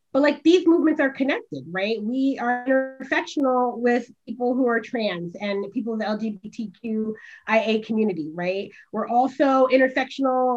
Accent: American